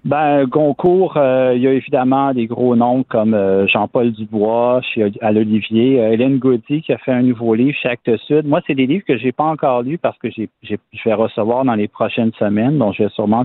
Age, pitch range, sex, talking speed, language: 50-69, 105-130 Hz, male, 235 wpm, French